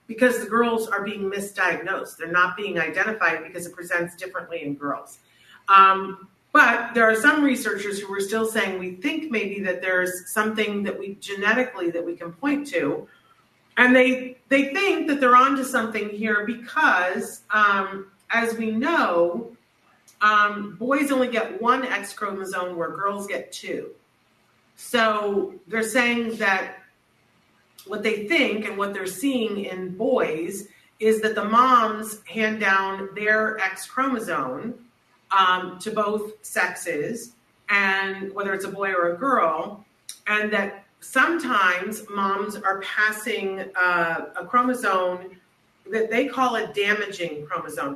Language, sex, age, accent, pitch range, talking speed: English, female, 40-59, American, 190-230 Hz, 145 wpm